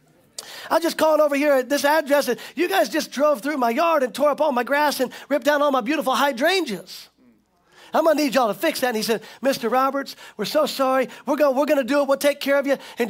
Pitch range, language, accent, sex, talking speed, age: 265-330 Hz, English, American, male, 265 wpm, 40-59